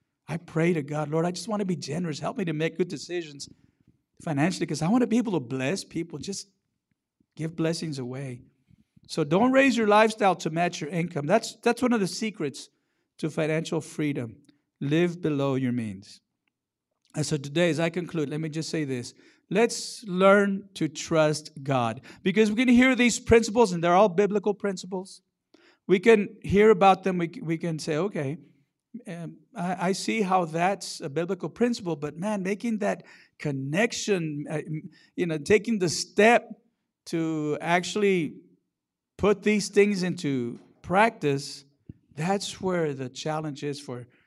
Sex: male